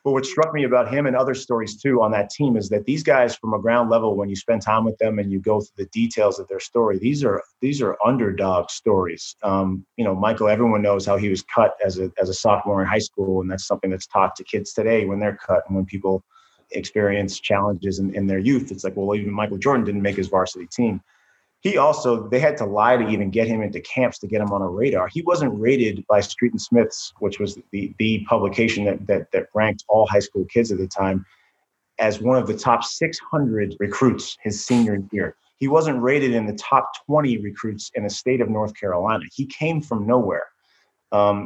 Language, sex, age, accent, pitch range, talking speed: English, male, 30-49, American, 100-125 Hz, 230 wpm